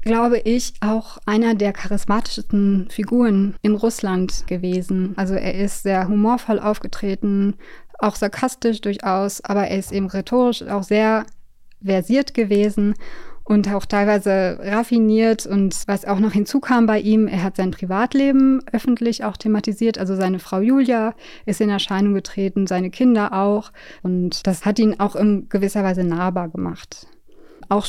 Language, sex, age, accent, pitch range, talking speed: German, female, 20-39, German, 195-215 Hz, 145 wpm